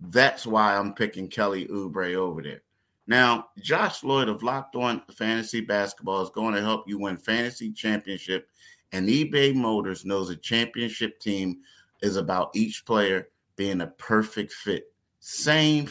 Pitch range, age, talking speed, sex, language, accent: 100-120 Hz, 30-49, 150 wpm, male, English, American